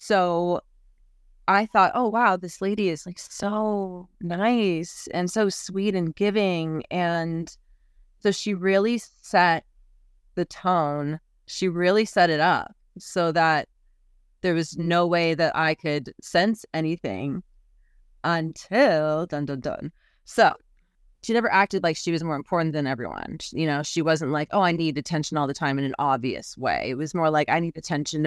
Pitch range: 155-195 Hz